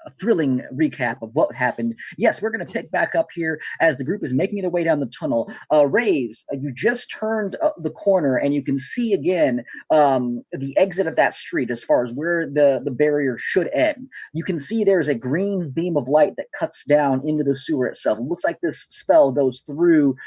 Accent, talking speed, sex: American, 220 wpm, male